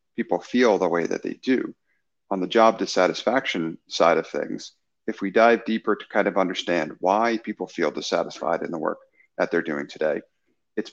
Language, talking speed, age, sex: English, 185 wpm, 40-59, male